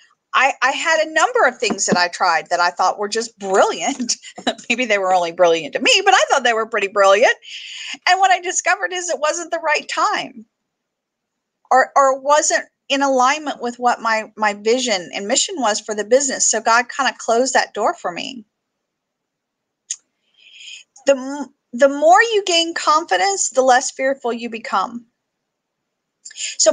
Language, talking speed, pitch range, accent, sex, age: English, 175 wpm, 230-330 Hz, American, female, 40-59